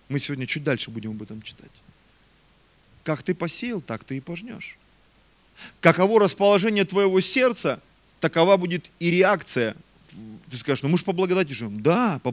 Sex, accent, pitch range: male, native, 135-210 Hz